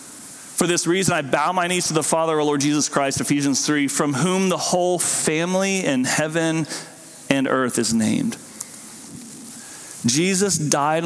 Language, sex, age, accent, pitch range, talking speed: English, male, 40-59, American, 135-170 Hz, 155 wpm